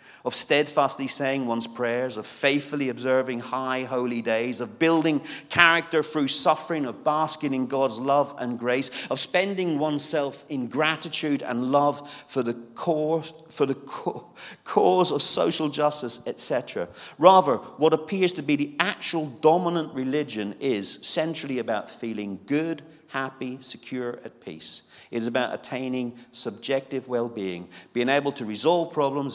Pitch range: 100-145 Hz